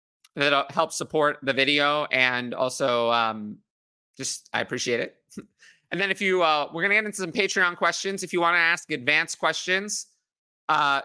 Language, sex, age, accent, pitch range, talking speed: English, male, 30-49, American, 140-175 Hz, 180 wpm